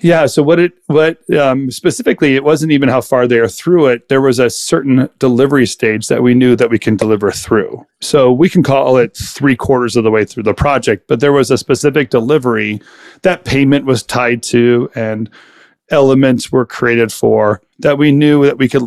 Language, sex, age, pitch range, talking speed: English, male, 40-59, 115-135 Hz, 205 wpm